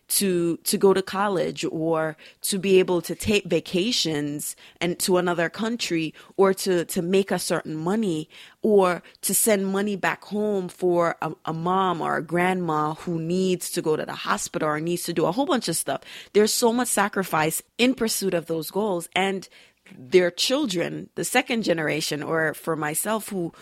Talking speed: 180 wpm